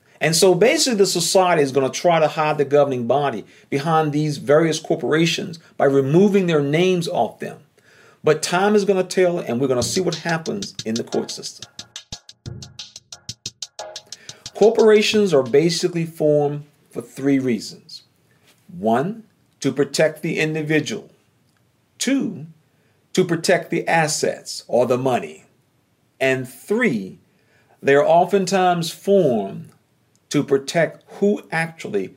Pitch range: 135-190 Hz